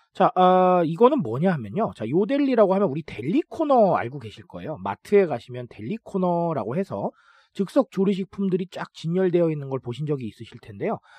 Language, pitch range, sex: Korean, 150-220 Hz, male